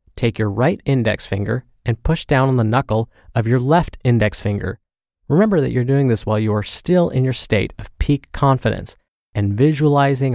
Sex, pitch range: male, 105-145 Hz